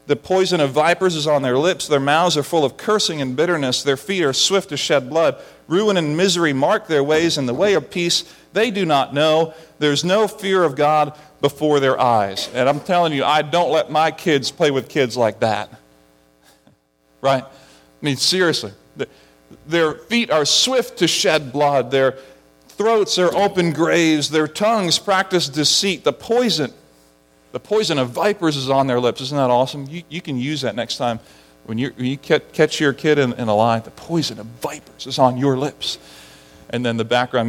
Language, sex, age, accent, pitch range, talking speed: English, male, 40-59, American, 115-170 Hz, 195 wpm